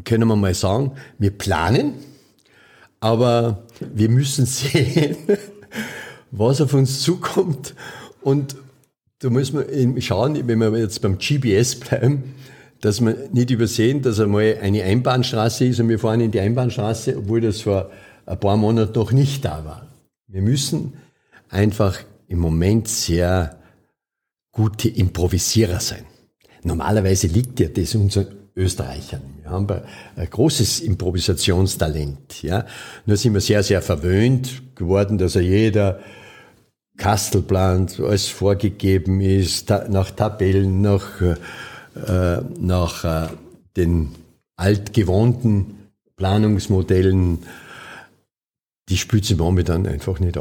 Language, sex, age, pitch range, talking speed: German, male, 50-69, 95-125 Hz, 115 wpm